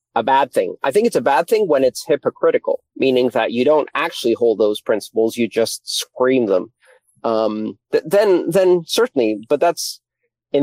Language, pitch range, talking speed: English, 115-140 Hz, 180 wpm